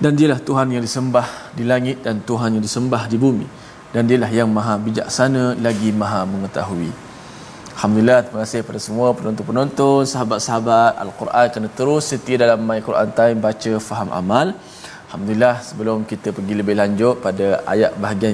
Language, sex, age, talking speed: Malayalam, male, 20-39, 150 wpm